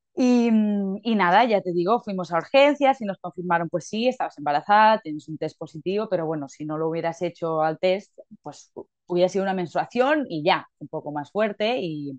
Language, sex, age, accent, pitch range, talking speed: Spanish, female, 20-39, Spanish, 170-230 Hz, 200 wpm